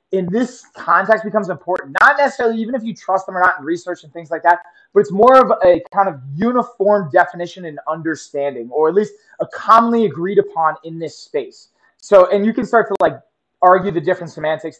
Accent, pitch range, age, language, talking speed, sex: American, 165-205 Hz, 20-39, English, 210 wpm, male